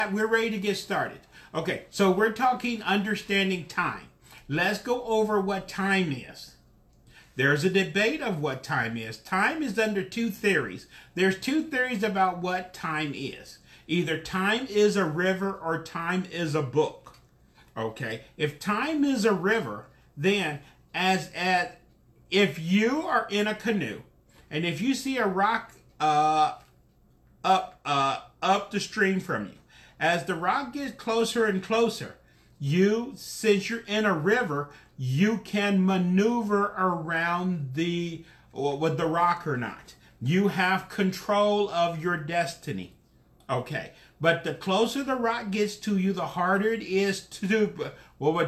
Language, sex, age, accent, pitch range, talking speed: English, male, 40-59, American, 160-210 Hz, 145 wpm